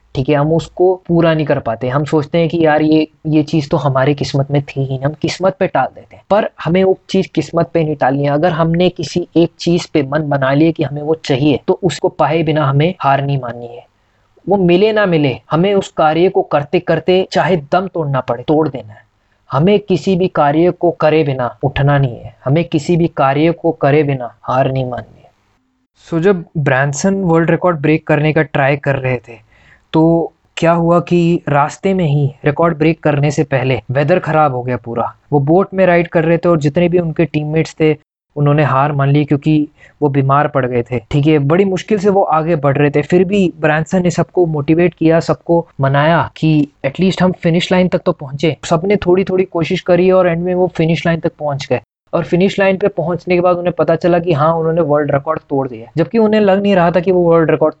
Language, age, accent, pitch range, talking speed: Hindi, 20-39, native, 140-175 Hz, 220 wpm